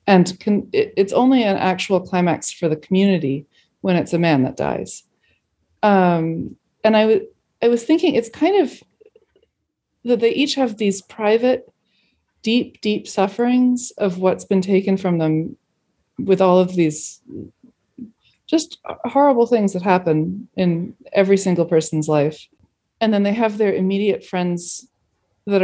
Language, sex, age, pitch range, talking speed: English, female, 30-49, 165-225 Hz, 145 wpm